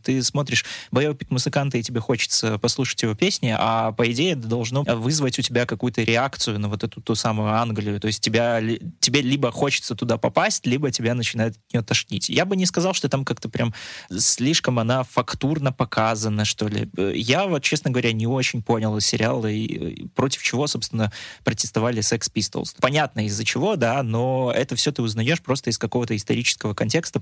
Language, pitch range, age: Russian, 110-130 Hz, 20-39